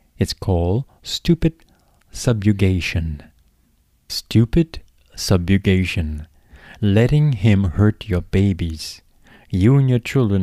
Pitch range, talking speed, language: 85-115 Hz, 85 wpm, English